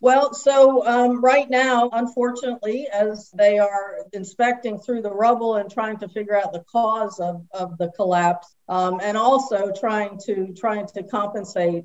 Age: 50-69